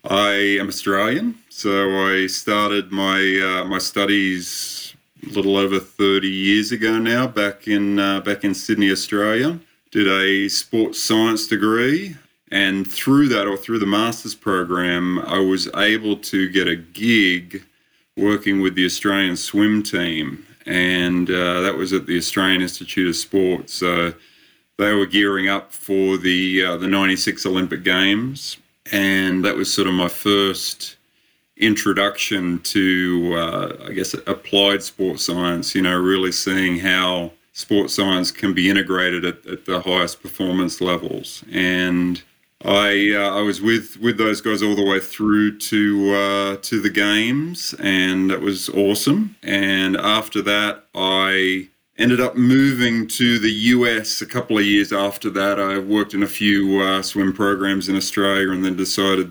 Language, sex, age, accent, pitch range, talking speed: English, male, 30-49, Australian, 95-105 Hz, 155 wpm